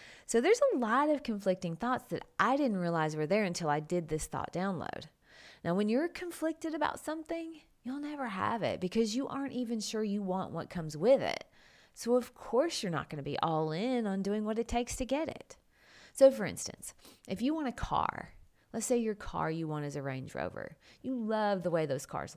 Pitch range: 180-255 Hz